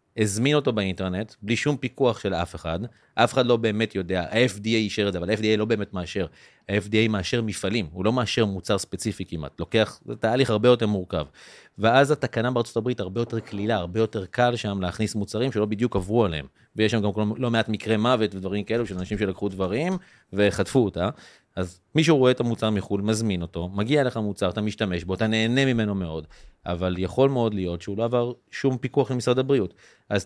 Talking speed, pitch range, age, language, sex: 175 wpm, 100-130 Hz, 30-49, Hebrew, male